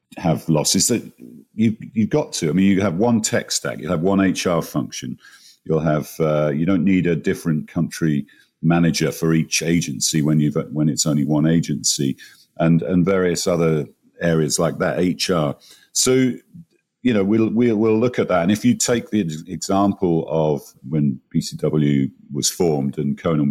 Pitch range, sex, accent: 75-95 Hz, male, British